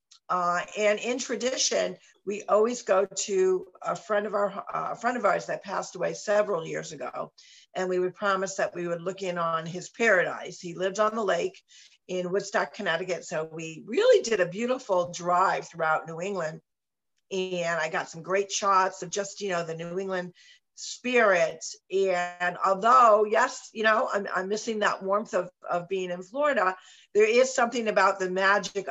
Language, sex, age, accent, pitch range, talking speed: English, female, 50-69, American, 175-210 Hz, 180 wpm